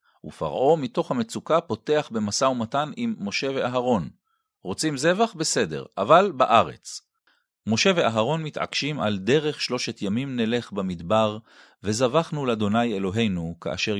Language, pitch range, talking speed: Hebrew, 100-150 Hz, 115 wpm